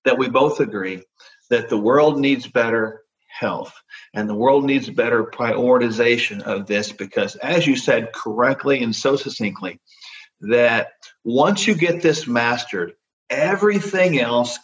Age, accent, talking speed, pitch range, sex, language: 50-69, American, 140 wpm, 115-160 Hz, male, English